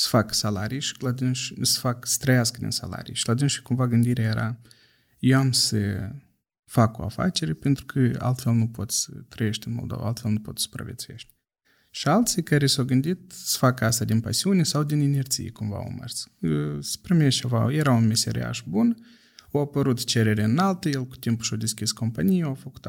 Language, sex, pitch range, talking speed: Romanian, male, 115-135 Hz, 185 wpm